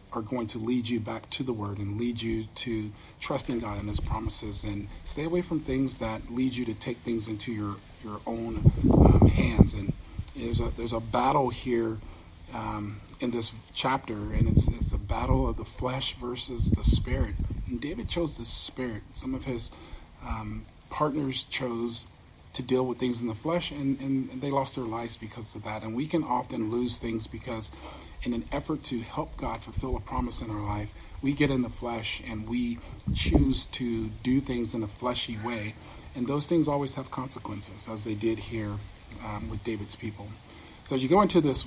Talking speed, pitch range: 205 wpm, 105-130 Hz